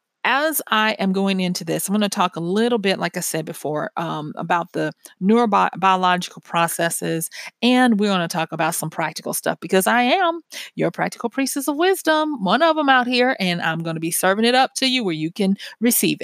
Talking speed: 215 wpm